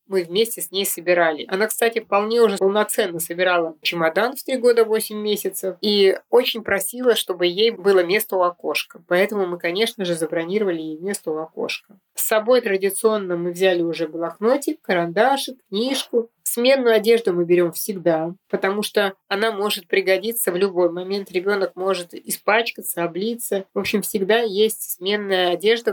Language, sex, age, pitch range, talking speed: Russian, female, 20-39, 180-225 Hz, 155 wpm